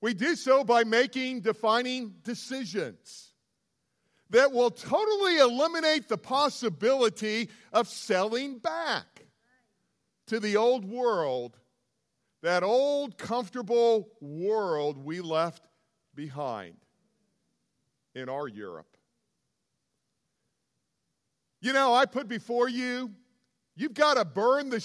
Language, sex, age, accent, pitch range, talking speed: English, male, 50-69, American, 215-265 Hz, 100 wpm